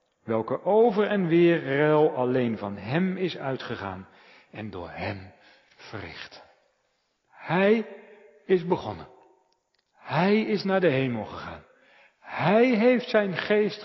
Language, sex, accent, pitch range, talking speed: Dutch, male, Dutch, 120-190 Hz, 115 wpm